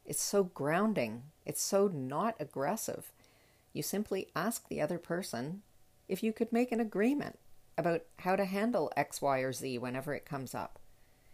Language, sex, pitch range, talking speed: English, female, 140-195 Hz, 165 wpm